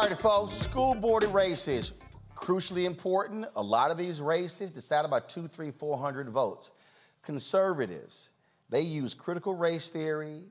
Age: 40-59